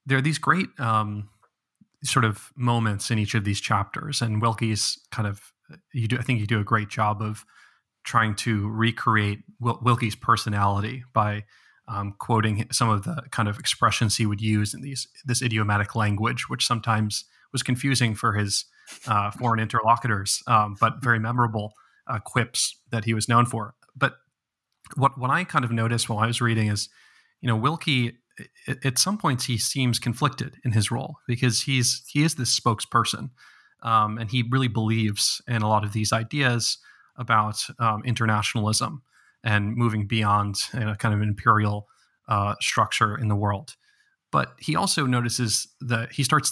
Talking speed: 175 wpm